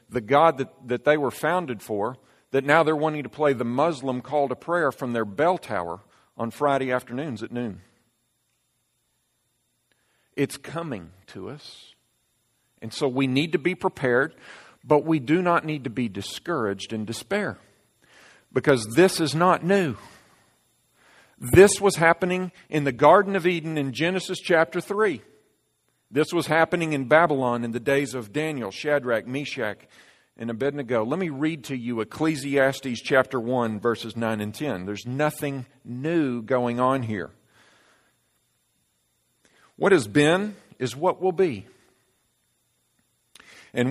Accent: American